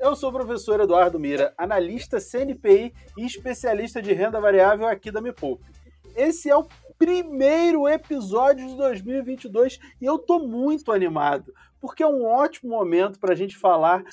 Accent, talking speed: Brazilian, 155 wpm